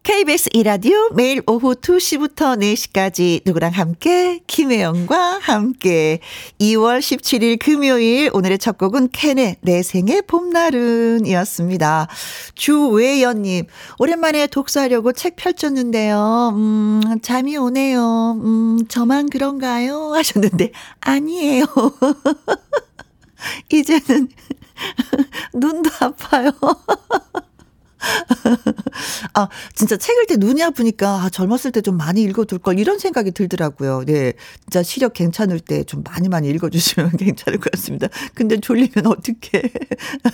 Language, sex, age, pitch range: Korean, female, 40-59, 190-275 Hz